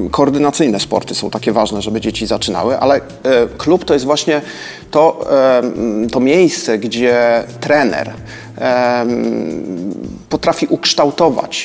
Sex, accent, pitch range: male, native, 130-160 Hz